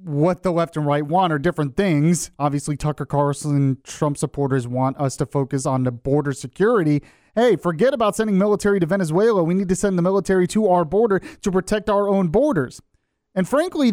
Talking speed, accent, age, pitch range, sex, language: 195 wpm, American, 30-49, 135-195 Hz, male, English